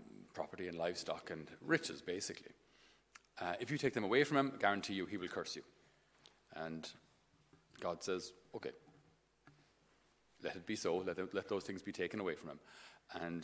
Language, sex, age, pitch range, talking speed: English, male, 40-59, 95-110 Hz, 180 wpm